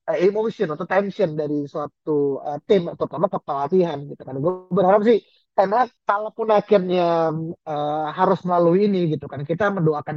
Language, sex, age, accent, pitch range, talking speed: Indonesian, male, 20-39, native, 150-195 Hz, 155 wpm